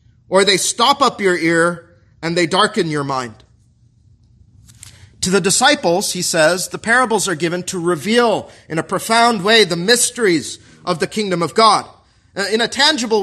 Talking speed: 165 wpm